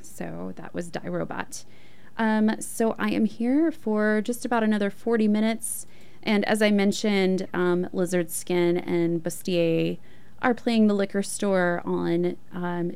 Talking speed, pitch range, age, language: 150 wpm, 175-220 Hz, 20-39, English